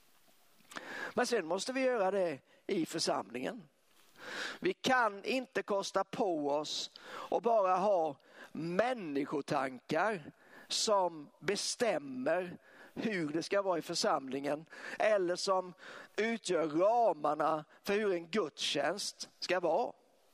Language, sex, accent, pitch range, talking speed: Swedish, male, native, 180-270 Hz, 105 wpm